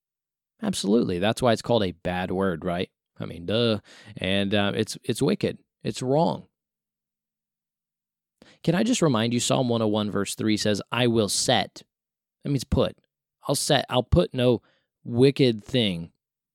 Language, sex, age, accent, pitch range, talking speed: English, male, 20-39, American, 100-135 Hz, 150 wpm